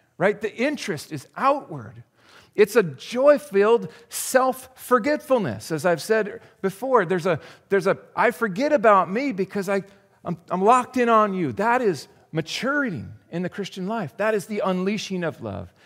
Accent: American